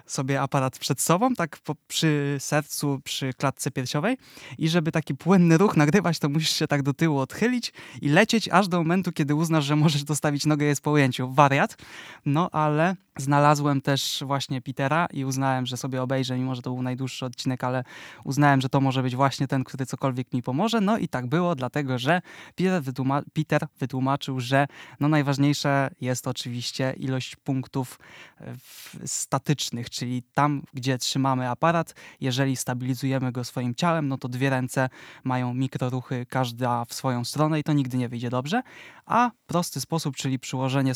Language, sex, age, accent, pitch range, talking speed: Polish, male, 20-39, native, 130-155 Hz, 175 wpm